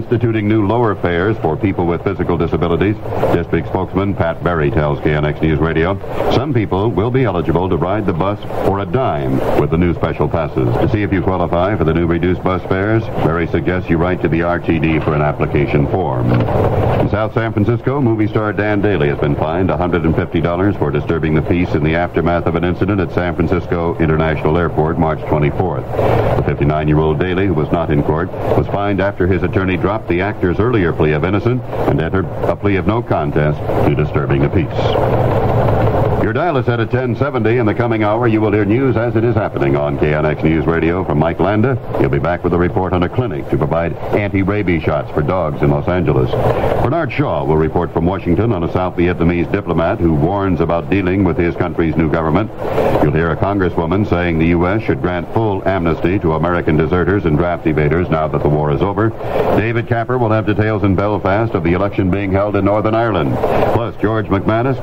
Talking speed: 205 wpm